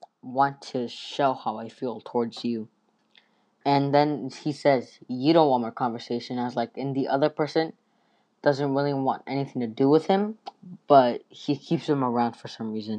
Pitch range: 130-170 Hz